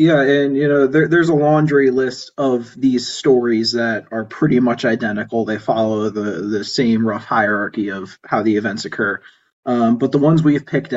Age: 30-49